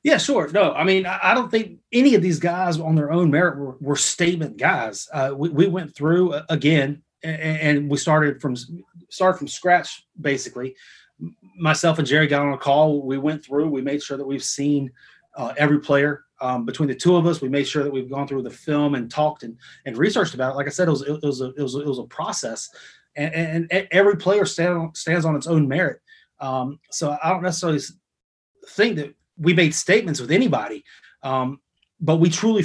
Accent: American